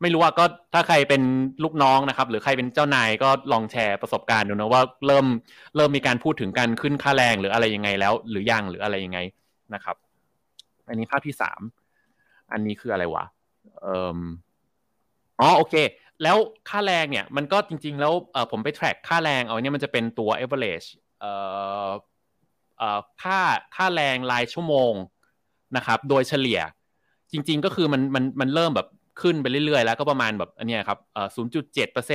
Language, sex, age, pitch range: Thai, male, 20-39, 110-150 Hz